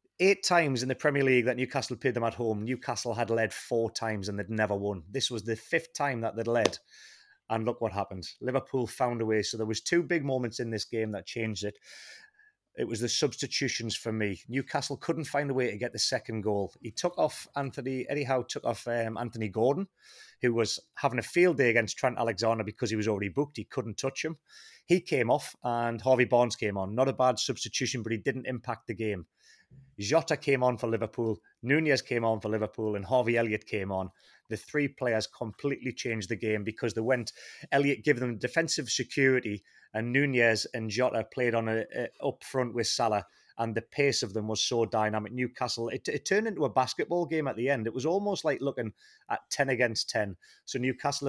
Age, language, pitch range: 30-49, English, 110-135 Hz